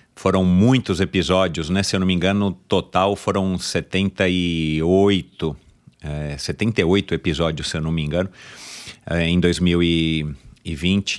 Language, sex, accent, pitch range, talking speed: Portuguese, male, Brazilian, 85-100 Hz, 130 wpm